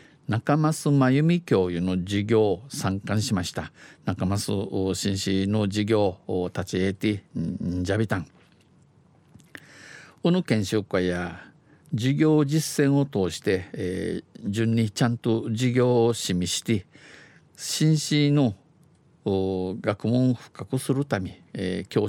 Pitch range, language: 100-140 Hz, Japanese